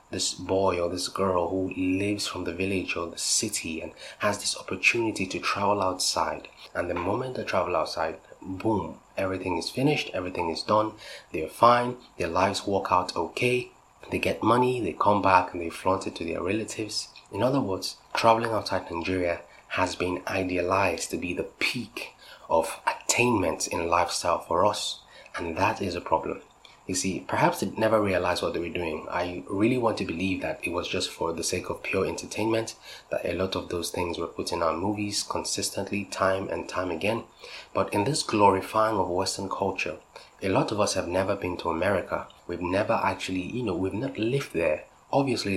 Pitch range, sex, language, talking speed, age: 90-110 Hz, male, English, 190 wpm, 20-39